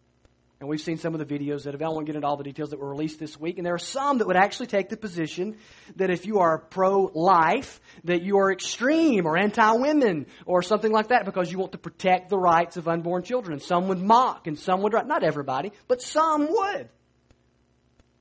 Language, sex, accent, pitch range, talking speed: English, male, American, 150-195 Hz, 220 wpm